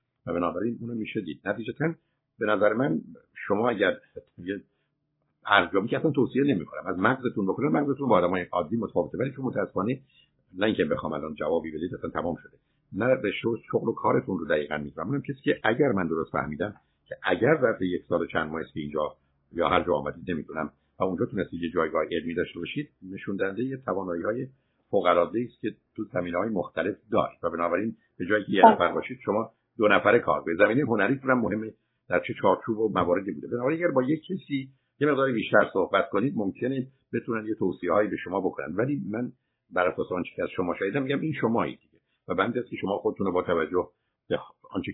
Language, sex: Persian, male